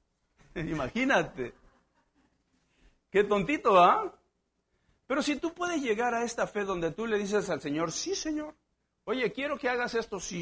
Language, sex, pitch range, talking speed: Spanish, male, 175-260 Hz, 155 wpm